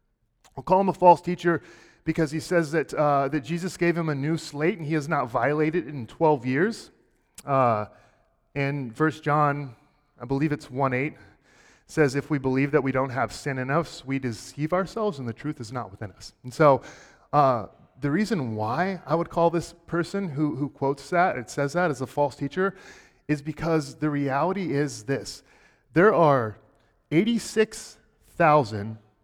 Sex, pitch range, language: male, 130-165 Hz, English